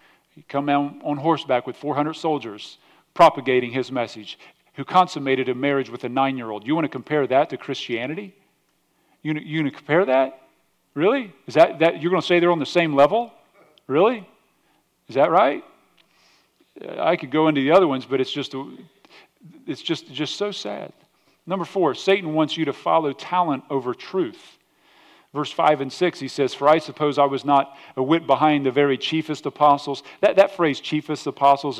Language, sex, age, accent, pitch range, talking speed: English, male, 40-59, American, 135-165 Hz, 180 wpm